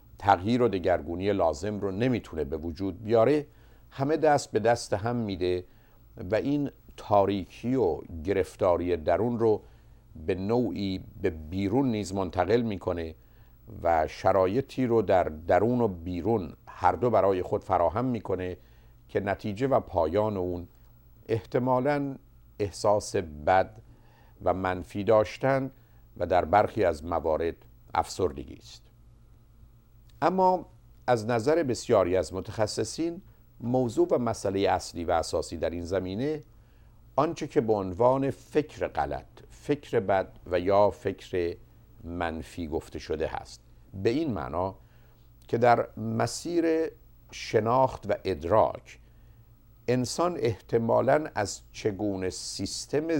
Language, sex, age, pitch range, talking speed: Persian, male, 50-69, 95-120 Hz, 115 wpm